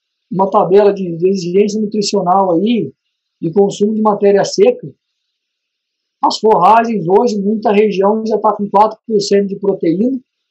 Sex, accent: male, Brazilian